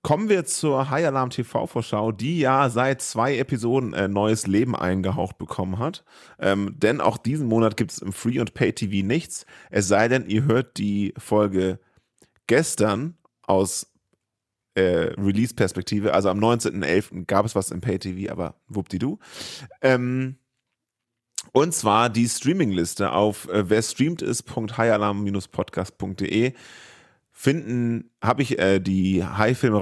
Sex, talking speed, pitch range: male, 135 wpm, 95-120 Hz